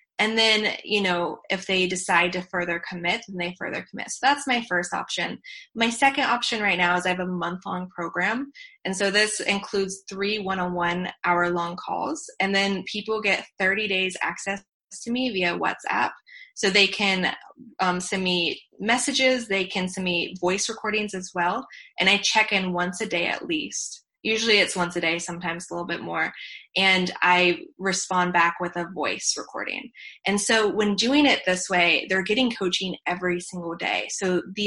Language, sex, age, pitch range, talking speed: English, female, 20-39, 180-215 Hz, 185 wpm